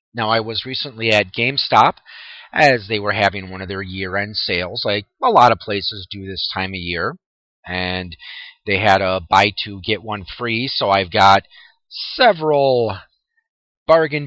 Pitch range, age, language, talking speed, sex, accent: 105-170 Hz, 30-49, English, 165 wpm, male, American